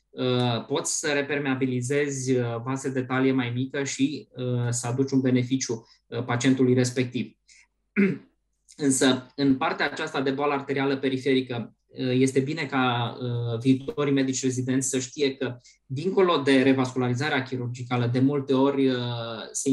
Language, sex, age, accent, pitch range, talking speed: Romanian, male, 20-39, native, 125-135 Hz, 120 wpm